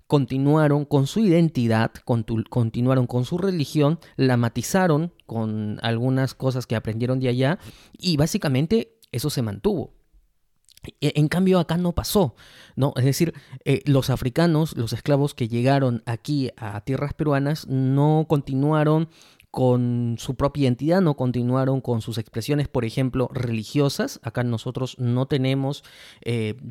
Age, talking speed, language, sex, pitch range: 30-49, 135 wpm, Spanish, male, 120-150 Hz